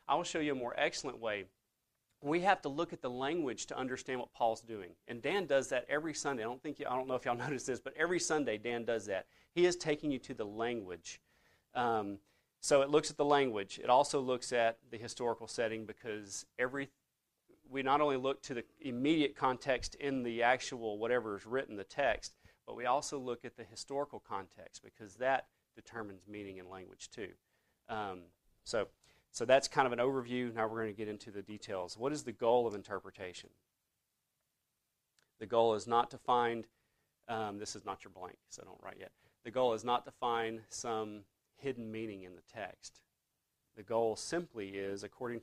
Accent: American